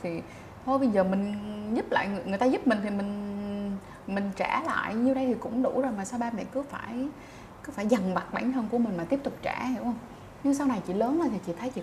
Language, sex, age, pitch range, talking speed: Vietnamese, female, 20-39, 180-245 Hz, 270 wpm